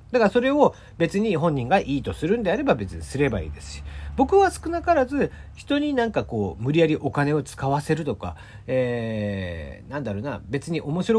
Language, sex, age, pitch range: Japanese, male, 40-59, 105-170 Hz